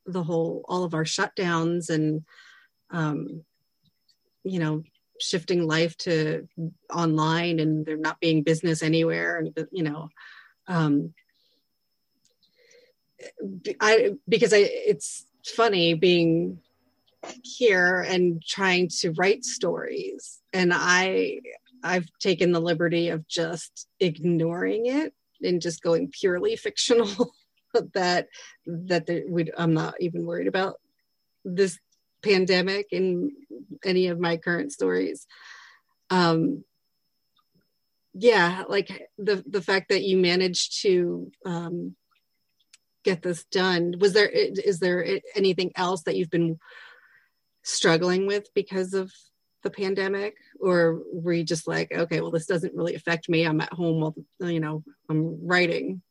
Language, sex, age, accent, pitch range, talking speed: English, female, 30-49, American, 165-200 Hz, 125 wpm